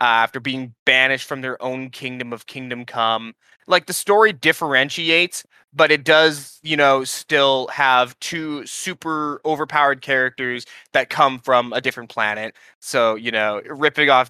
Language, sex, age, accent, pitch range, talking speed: English, male, 20-39, American, 130-165 Hz, 155 wpm